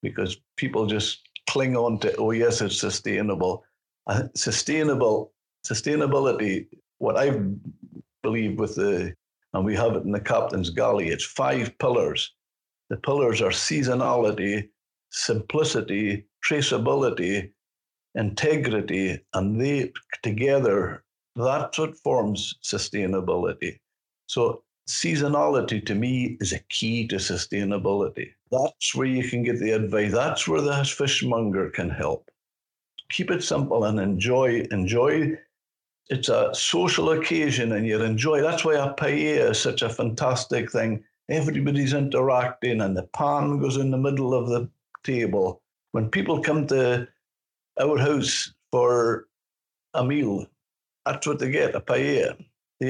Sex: male